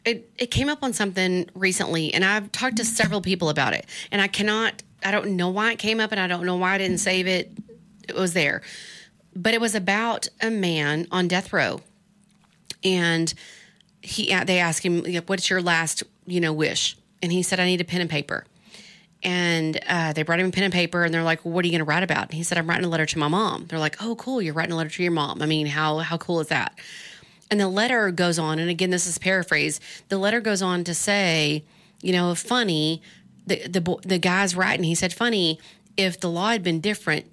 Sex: female